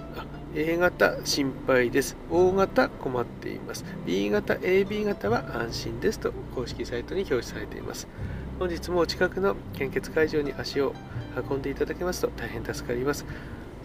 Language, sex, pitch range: Japanese, male, 125-160 Hz